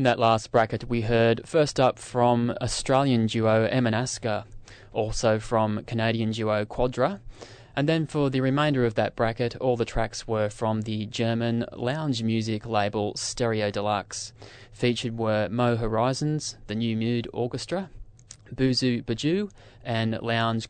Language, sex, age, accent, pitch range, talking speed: English, male, 20-39, Australian, 110-125 Hz, 140 wpm